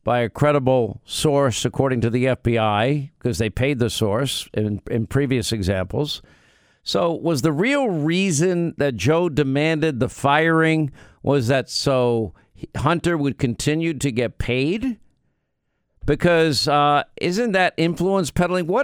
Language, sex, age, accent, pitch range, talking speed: English, male, 50-69, American, 125-175 Hz, 135 wpm